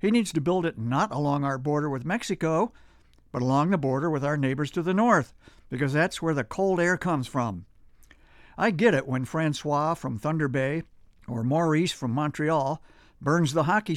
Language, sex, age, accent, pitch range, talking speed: English, male, 60-79, American, 135-170 Hz, 190 wpm